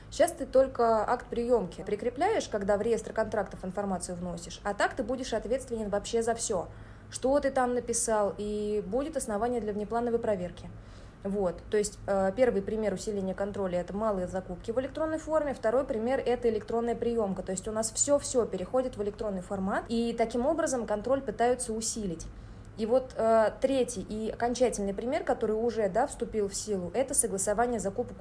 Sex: female